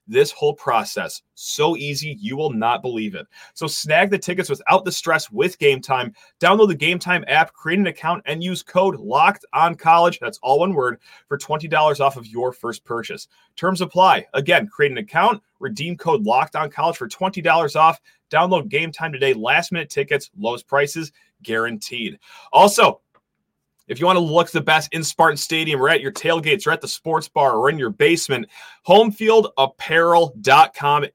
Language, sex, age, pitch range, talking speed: English, male, 30-49, 145-205 Hz, 185 wpm